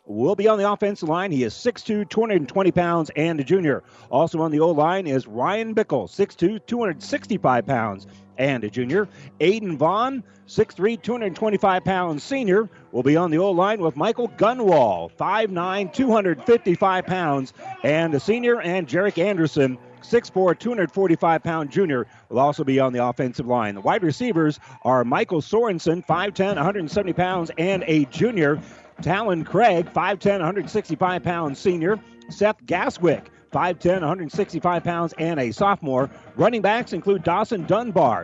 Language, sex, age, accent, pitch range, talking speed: English, male, 40-59, American, 155-205 Hz, 150 wpm